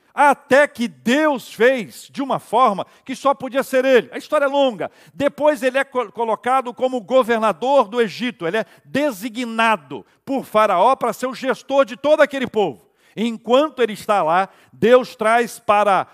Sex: male